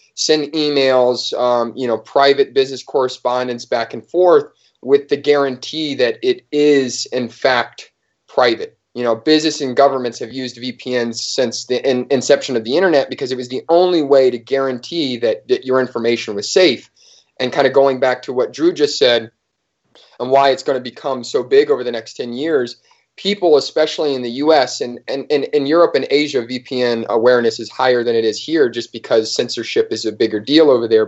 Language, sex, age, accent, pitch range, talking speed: English, male, 30-49, American, 120-150 Hz, 195 wpm